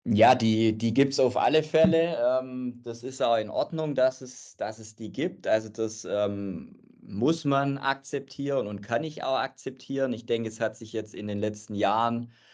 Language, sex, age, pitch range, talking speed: German, male, 20-39, 105-120 Hz, 185 wpm